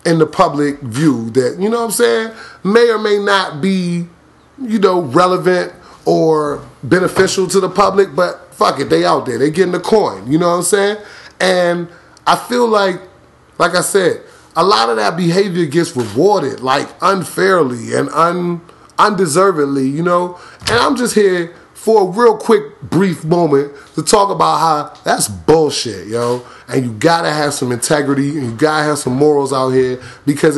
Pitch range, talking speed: 135-180 Hz, 175 wpm